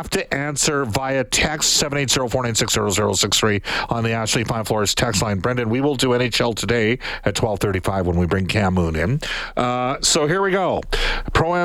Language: English